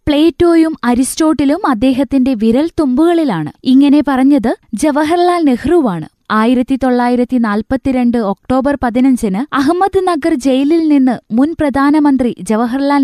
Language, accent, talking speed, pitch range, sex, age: Malayalam, native, 90 wpm, 240-300 Hz, female, 20-39